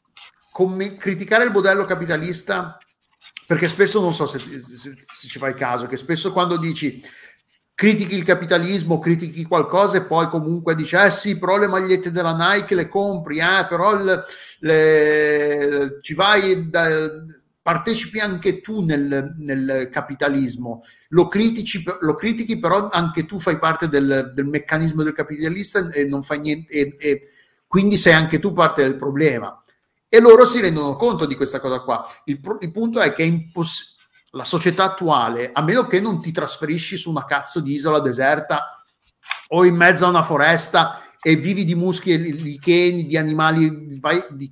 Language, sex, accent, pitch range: Italian, male, native, 145-185 Hz